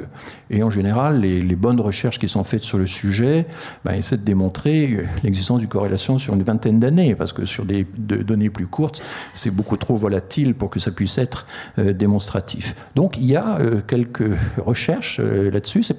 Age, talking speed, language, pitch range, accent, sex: 50-69, 195 wpm, French, 105-135 Hz, French, male